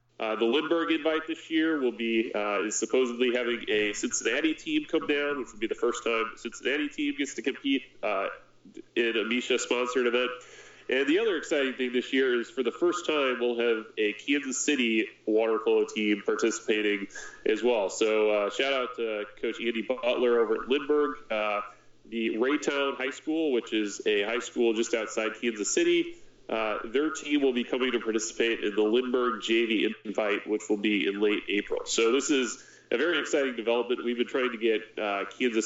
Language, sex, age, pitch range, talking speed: English, male, 30-49, 110-150 Hz, 195 wpm